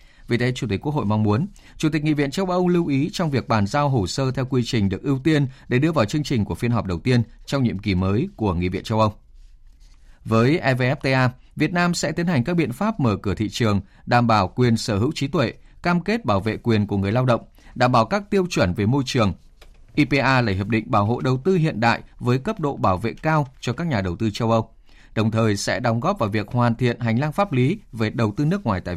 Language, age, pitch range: Vietnamese, 20-39, 110-145 Hz